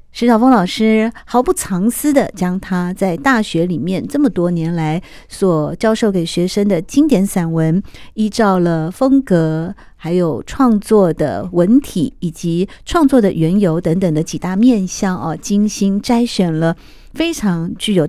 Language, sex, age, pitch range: Chinese, female, 50-69, 175-245 Hz